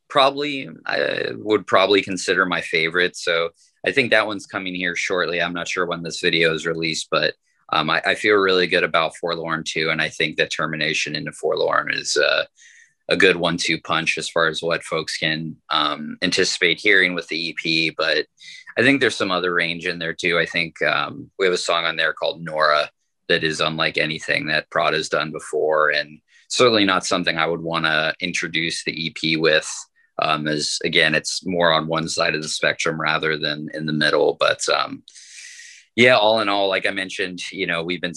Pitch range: 80-90 Hz